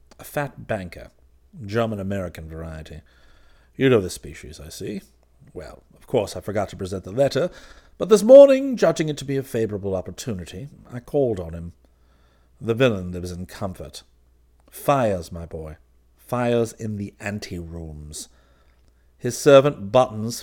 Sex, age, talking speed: male, 50-69, 145 wpm